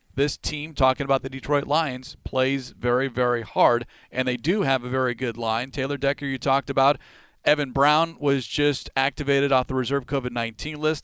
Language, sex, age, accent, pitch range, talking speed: English, male, 40-59, American, 130-155 Hz, 185 wpm